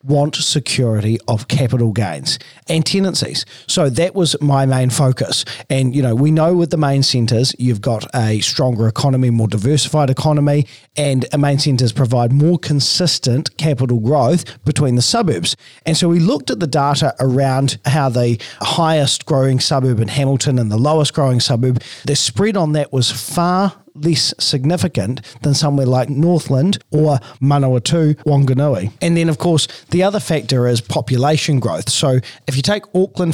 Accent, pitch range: Australian, 125-160 Hz